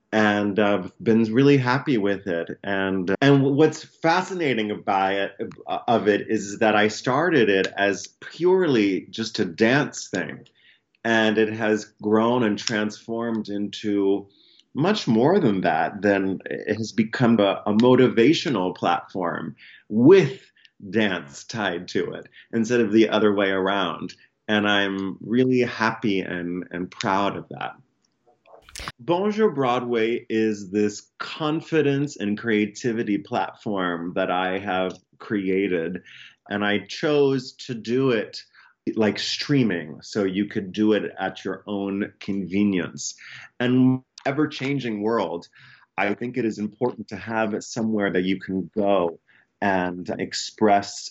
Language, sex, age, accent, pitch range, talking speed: English, male, 30-49, American, 95-115 Hz, 130 wpm